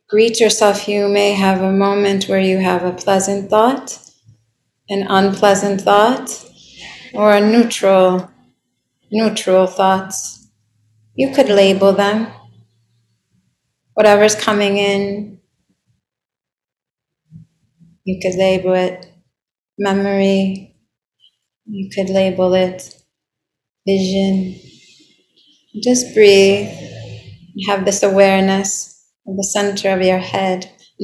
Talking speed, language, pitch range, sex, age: 95 wpm, English, 185-210 Hz, female, 30-49